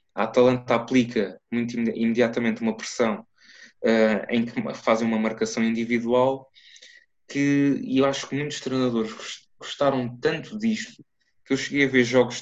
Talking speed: 140 wpm